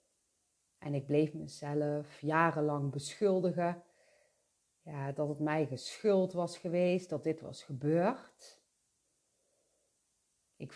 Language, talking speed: Dutch, 95 wpm